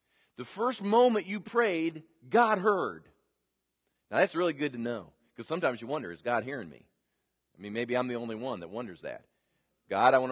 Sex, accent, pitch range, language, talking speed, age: male, American, 125-185 Hz, English, 200 wpm, 40-59